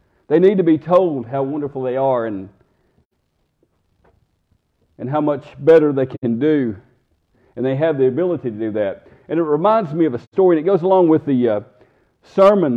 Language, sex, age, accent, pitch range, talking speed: English, male, 50-69, American, 125-165 Hz, 185 wpm